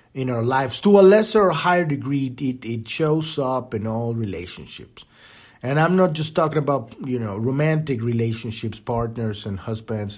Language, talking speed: English, 170 wpm